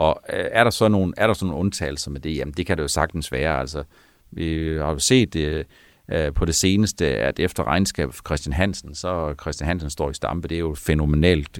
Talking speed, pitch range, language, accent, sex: 230 wpm, 80-100 Hz, Danish, native, male